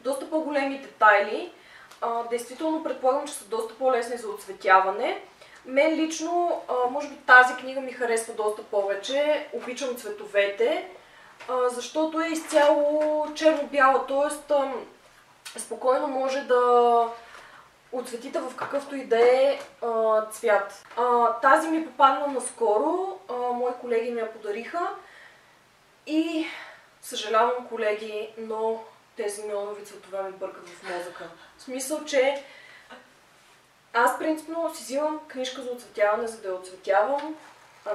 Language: Bulgarian